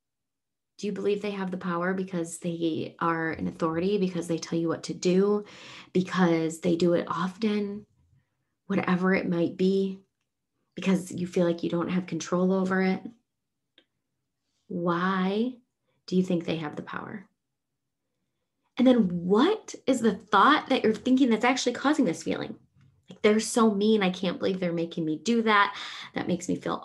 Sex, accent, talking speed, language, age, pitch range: female, American, 170 wpm, English, 20-39, 170-225 Hz